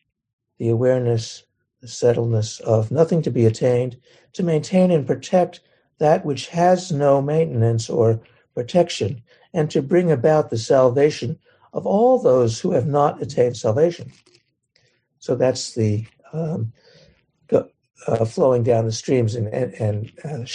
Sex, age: male, 60-79